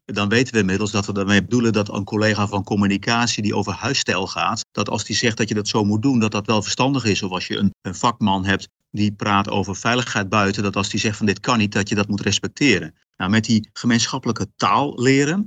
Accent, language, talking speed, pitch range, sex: Dutch, Dutch, 245 wpm, 100-125 Hz, male